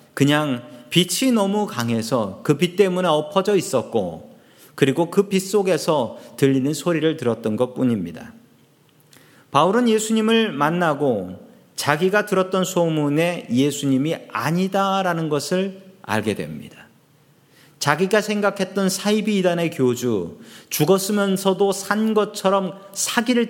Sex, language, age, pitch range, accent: male, Korean, 40-59, 130-195 Hz, native